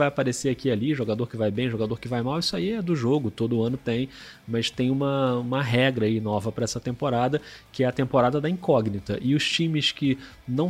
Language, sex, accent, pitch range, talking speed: Portuguese, male, Brazilian, 110-130 Hz, 230 wpm